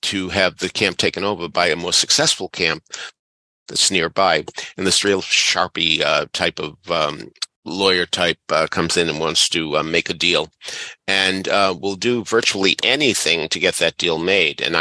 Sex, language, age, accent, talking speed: male, English, 50-69, American, 180 wpm